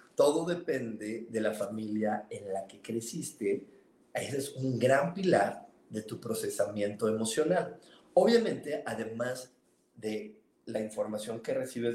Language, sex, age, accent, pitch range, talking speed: Spanish, male, 40-59, Mexican, 110-135 Hz, 125 wpm